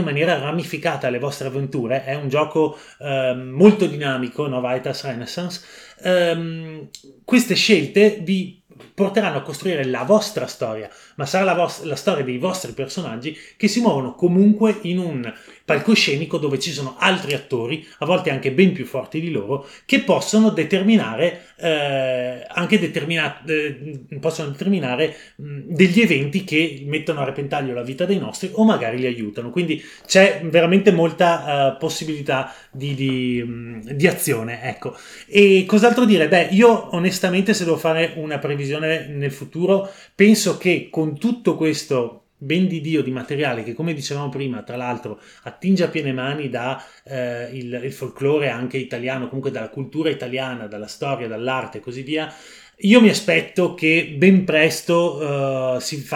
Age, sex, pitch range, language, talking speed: 30-49, male, 135-175 Hz, Italian, 145 wpm